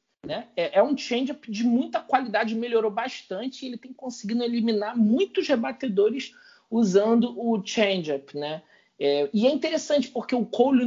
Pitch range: 160-235 Hz